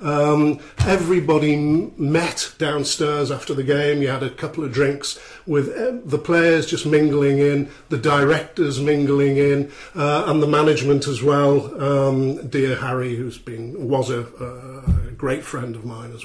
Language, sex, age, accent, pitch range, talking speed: English, male, 50-69, British, 130-155 Hz, 150 wpm